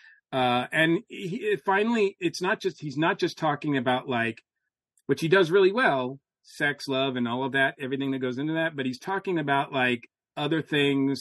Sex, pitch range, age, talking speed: male, 125-160 Hz, 40-59, 195 wpm